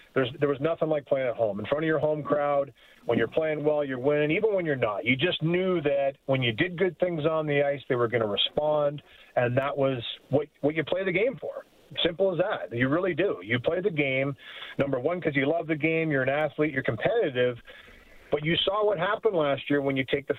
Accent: American